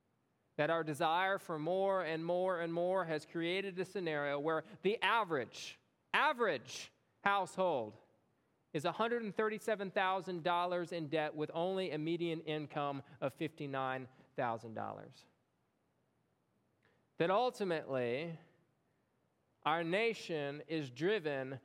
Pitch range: 160-230 Hz